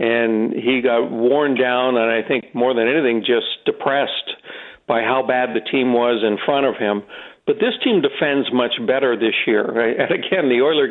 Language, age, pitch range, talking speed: English, 60-79, 115-175 Hz, 195 wpm